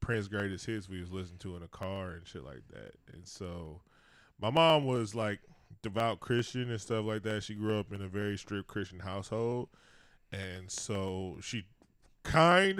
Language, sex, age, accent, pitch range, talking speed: English, male, 10-29, American, 95-110 Hz, 185 wpm